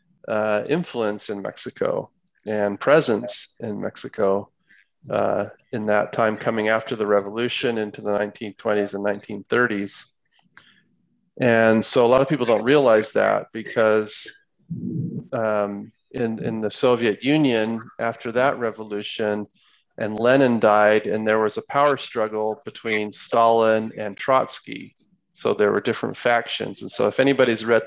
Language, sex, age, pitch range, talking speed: English, male, 40-59, 105-125 Hz, 135 wpm